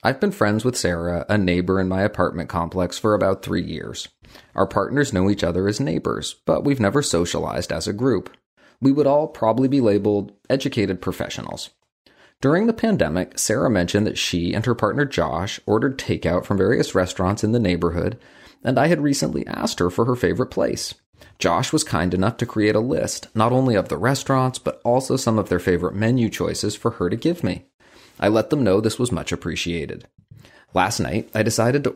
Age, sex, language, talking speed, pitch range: 30-49, male, English, 195 wpm, 95-125 Hz